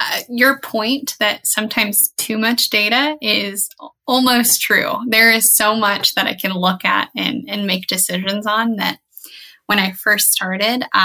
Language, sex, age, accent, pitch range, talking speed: English, female, 10-29, American, 200-250 Hz, 165 wpm